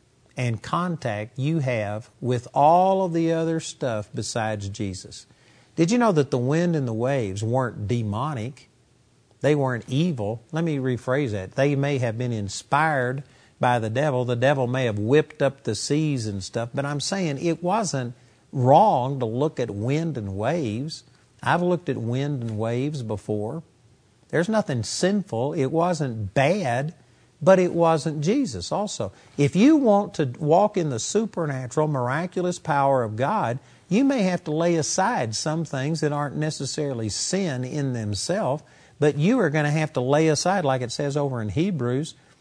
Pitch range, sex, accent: 120-160 Hz, male, American